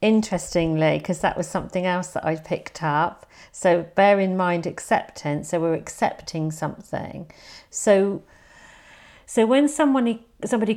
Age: 50-69